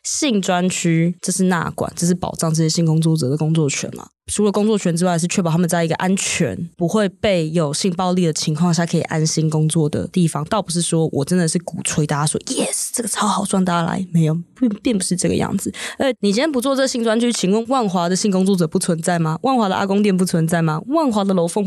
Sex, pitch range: female, 160-195 Hz